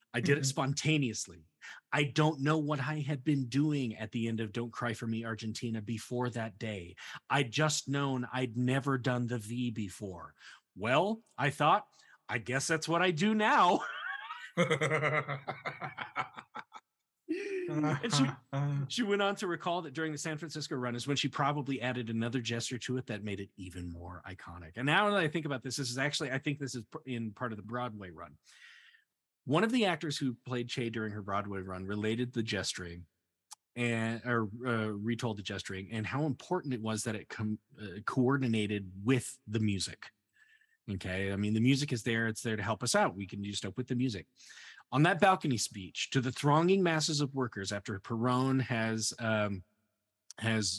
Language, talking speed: English, 185 wpm